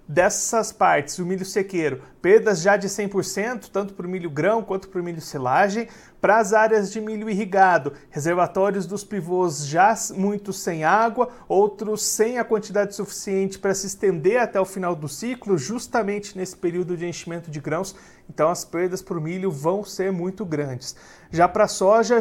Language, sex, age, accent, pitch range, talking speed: Portuguese, male, 40-59, Brazilian, 175-210 Hz, 175 wpm